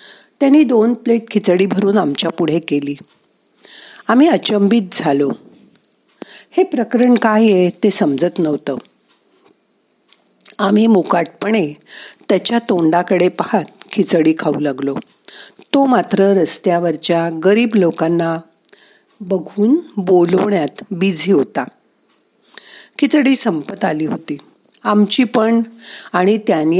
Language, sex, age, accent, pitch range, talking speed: Marathi, female, 50-69, native, 175-235 Hz, 50 wpm